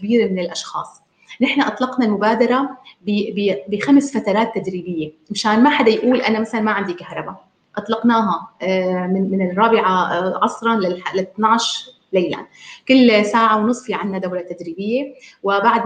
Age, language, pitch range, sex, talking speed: 30-49, Arabic, 190-230 Hz, female, 125 wpm